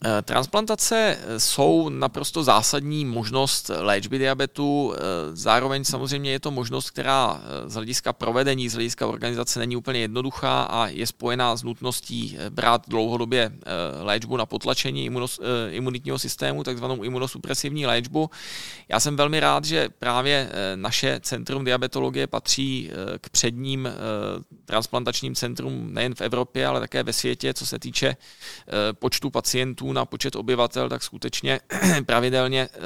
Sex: male